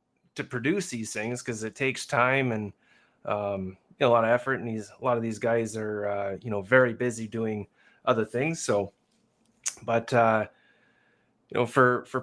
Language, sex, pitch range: English, male, 110-130 Hz